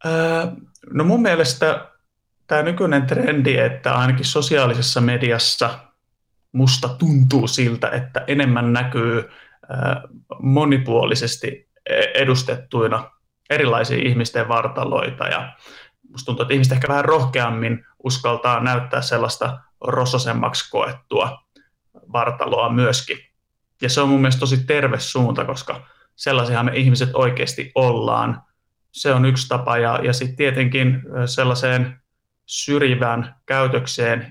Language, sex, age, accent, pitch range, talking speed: Finnish, male, 30-49, native, 120-130 Hz, 105 wpm